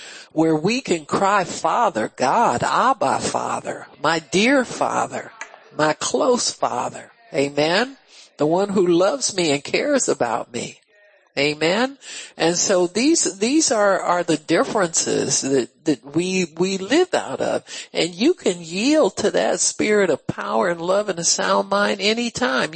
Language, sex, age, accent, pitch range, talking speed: English, male, 60-79, American, 175-260 Hz, 150 wpm